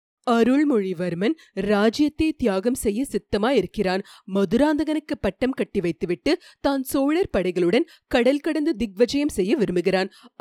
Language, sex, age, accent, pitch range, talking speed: Tamil, female, 30-49, native, 195-275 Hz, 100 wpm